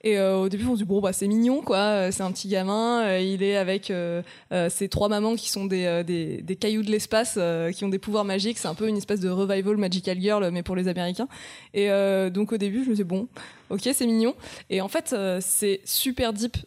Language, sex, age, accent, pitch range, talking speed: French, female, 20-39, French, 180-210 Hz, 255 wpm